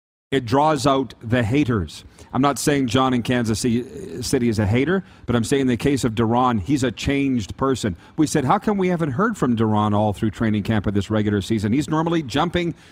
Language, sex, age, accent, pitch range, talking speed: English, male, 40-59, American, 110-175 Hz, 220 wpm